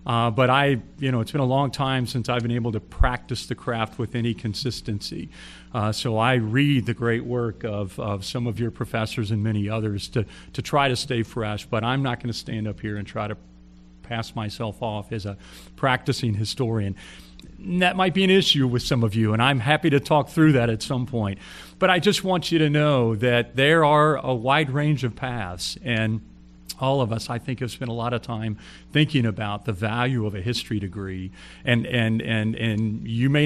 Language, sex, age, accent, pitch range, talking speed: English, male, 40-59, American, 105-130 Hz, 220 wpm